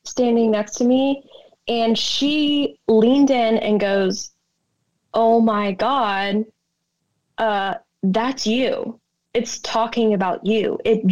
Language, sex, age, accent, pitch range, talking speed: English, female, 20-39, American, 195-240 Hz, 115 wpm